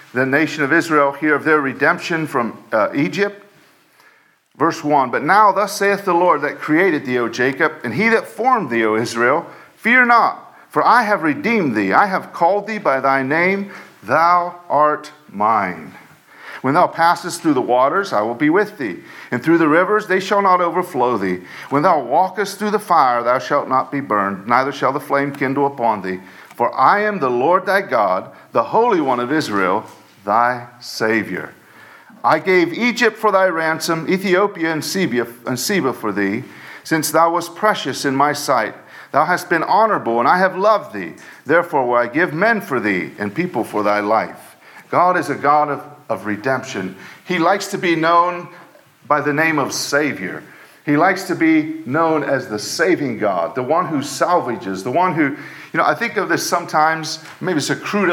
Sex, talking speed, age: male, 190 wpm, 50-69